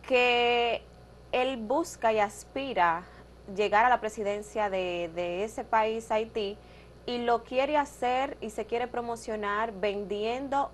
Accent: American